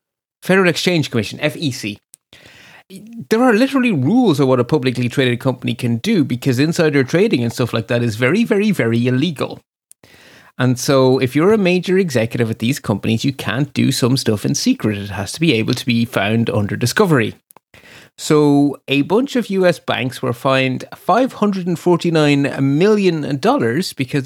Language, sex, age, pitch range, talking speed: English, male, 30-49, 120-160 Hz, 165 wpm